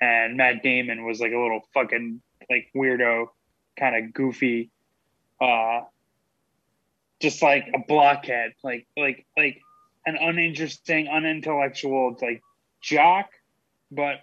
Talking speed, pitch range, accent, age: 115 wpm, 120-155 Hz, American, 20-39